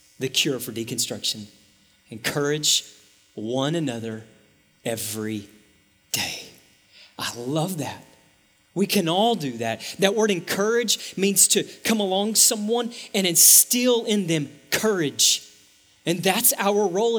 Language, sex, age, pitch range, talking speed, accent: English, male, 30-49, 150-220 Hz, 120 wpm, American